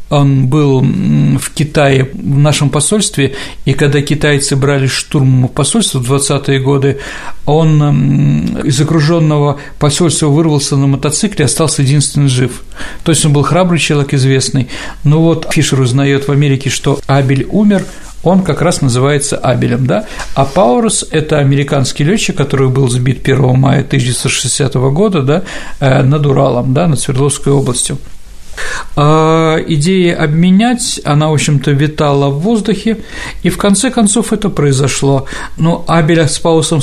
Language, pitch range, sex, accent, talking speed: Russian, 135-165 Hz, male, native, 140 wpm